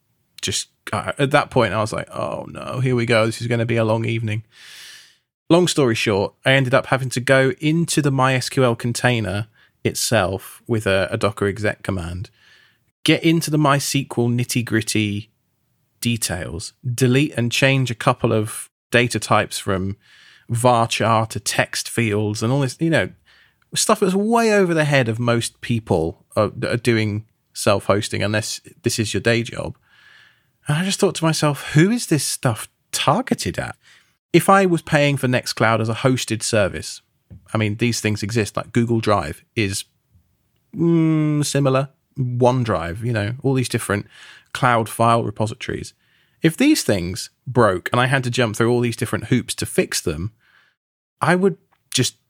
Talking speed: 170 wpm